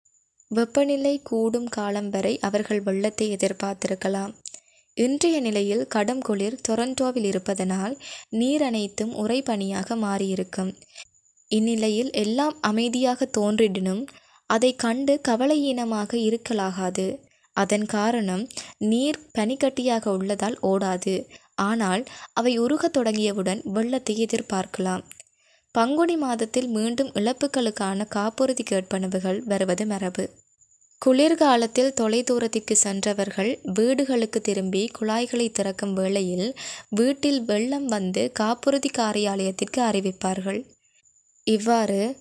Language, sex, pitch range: Tamil, female, 200-245 Hz